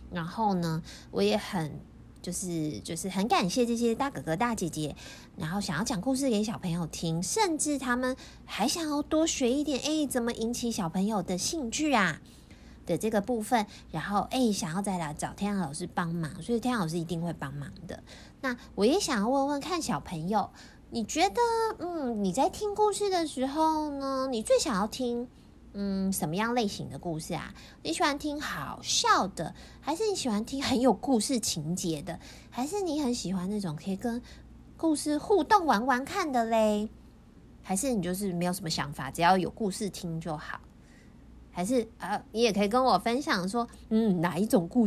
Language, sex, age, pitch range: Chinese, female, 20-39, 175-260 Hz